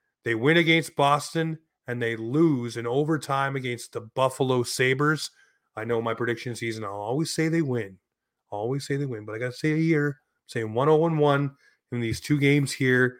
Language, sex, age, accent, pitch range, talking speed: English, male, 30-49, American, 120-160 Hz, 205 wpm